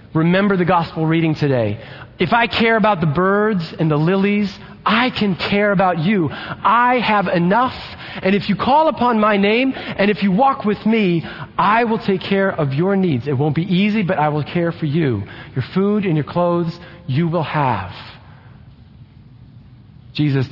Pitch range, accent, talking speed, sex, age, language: 125-185 Hz, American, 180 wpm, male, 40-59, English